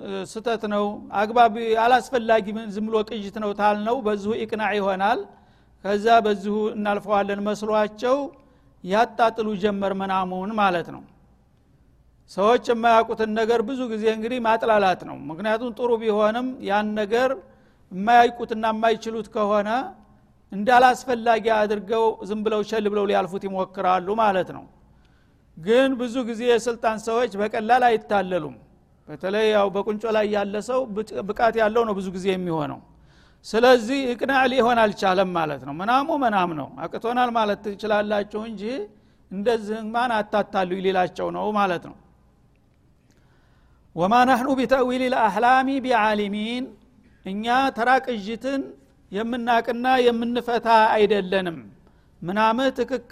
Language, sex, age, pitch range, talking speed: Amharic, male, 60-79, 205-235 Hz, 100 wpm